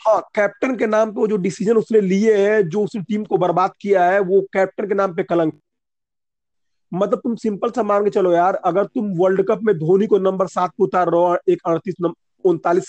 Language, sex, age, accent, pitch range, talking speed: Hindi, male, 40-59, native, 180-220 Hz, 220 wpm